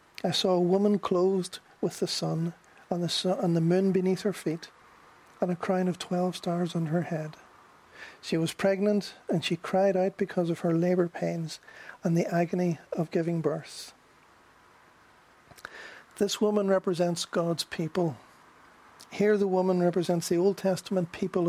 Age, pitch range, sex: 50-69, 170-190 Hz, male